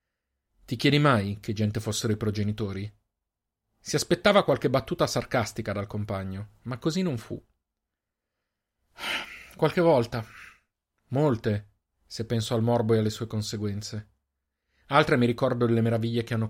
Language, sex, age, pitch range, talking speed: Italian, male, 40-59, 100-125 Hz, 135 wpm